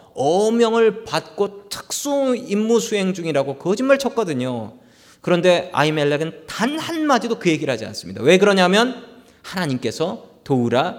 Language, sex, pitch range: Korean, male, 160-235 Hz